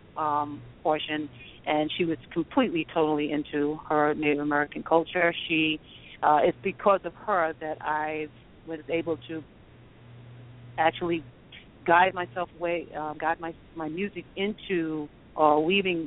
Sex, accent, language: female, American, English